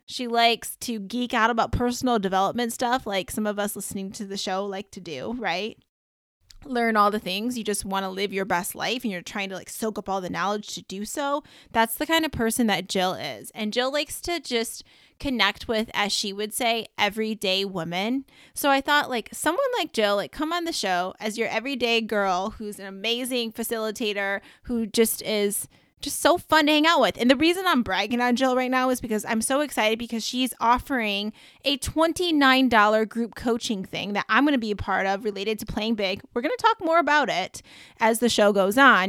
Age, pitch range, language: 20-39, 205-265 Hz, English